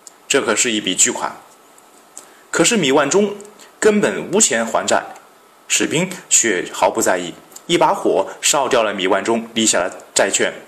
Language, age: Chinese, 30-49